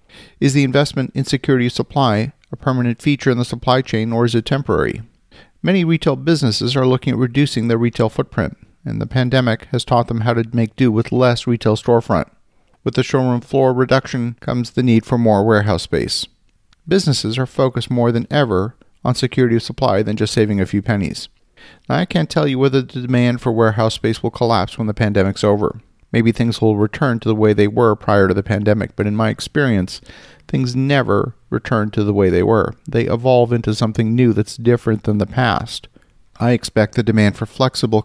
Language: English